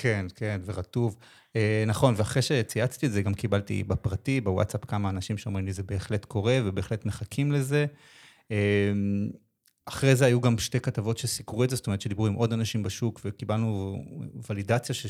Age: 30-49